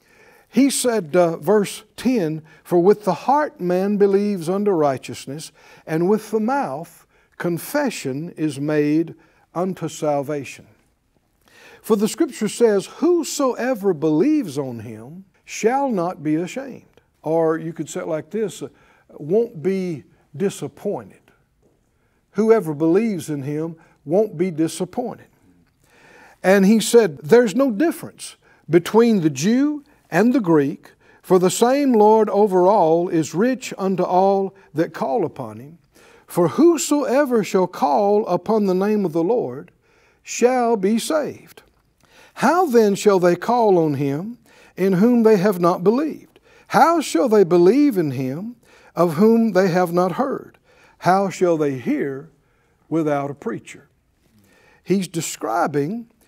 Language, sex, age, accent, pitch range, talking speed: English, male, 60-79, American, 160-230 Hz, 135 wpm